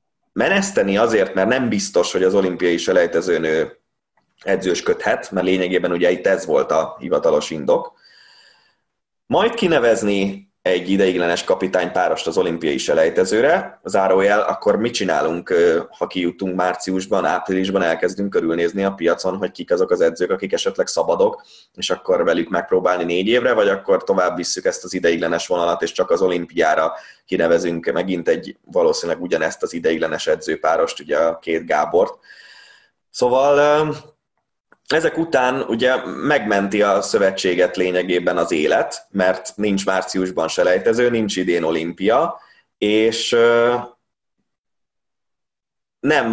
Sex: male